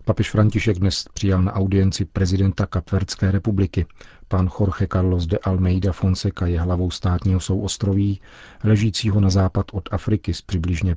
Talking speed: 140 wpm